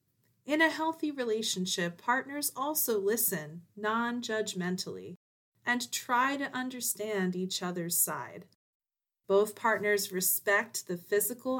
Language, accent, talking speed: English, American, 105 wpm